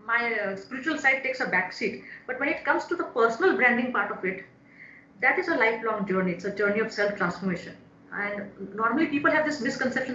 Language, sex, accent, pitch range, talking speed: English, female, Indian, 205-290 Hz, 200 wpm